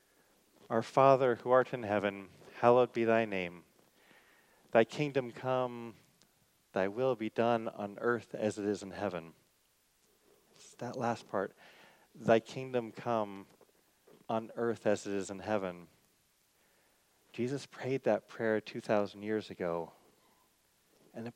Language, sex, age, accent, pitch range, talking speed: English, male, 30-49, American, 100-120 Hz, 130 wpm